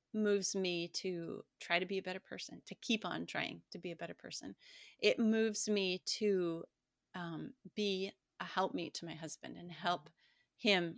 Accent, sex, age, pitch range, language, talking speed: American, female, 30-49, 170-205 Hz, English, 180 wpm